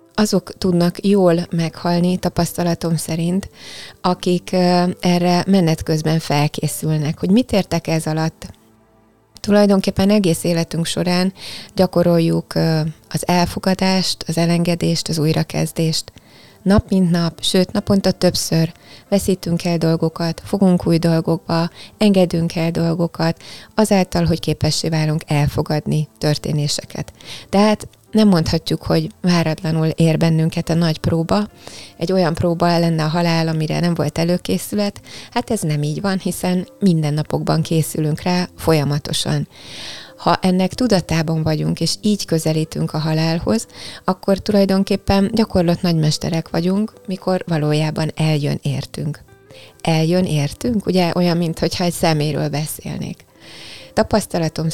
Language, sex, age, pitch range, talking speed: Hungarian, female, 20-39, 160-185 Hz, 115 wpm